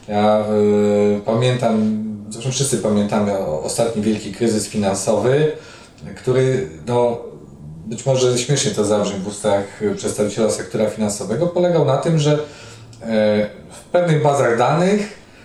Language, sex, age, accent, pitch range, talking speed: Polish, male, 40-59, native, 110-145 Hz, 125 wpm